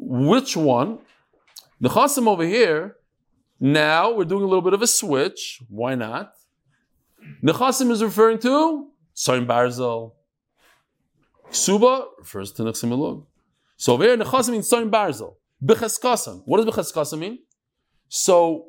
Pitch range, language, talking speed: 135-215 Hz, English, 125 wpm